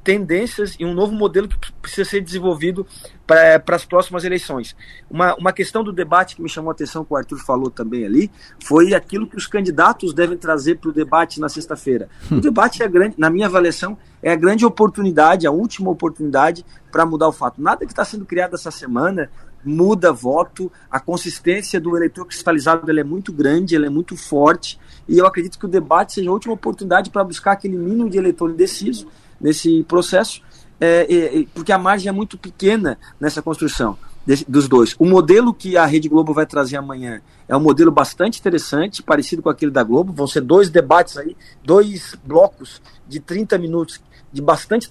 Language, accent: Portuguese, Brazilian